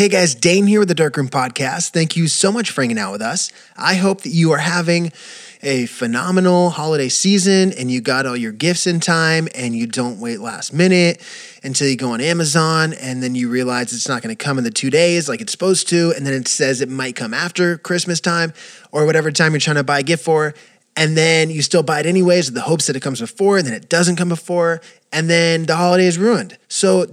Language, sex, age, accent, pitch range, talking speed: English, male, 20-39, American, 135-170 Hz, 245 wpm